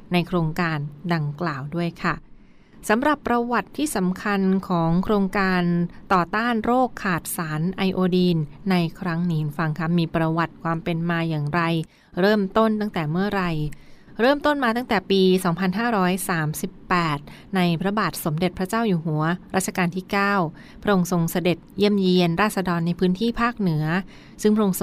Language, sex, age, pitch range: Thai, female, 20-39, 170-195 Hz